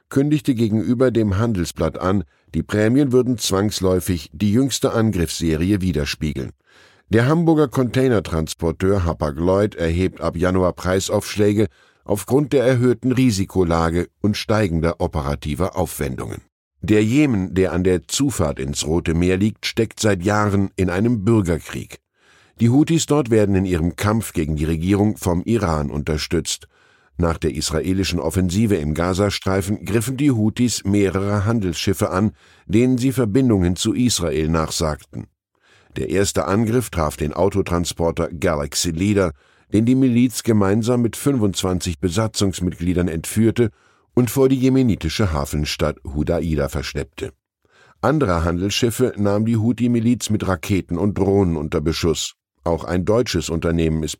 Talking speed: 130 wpm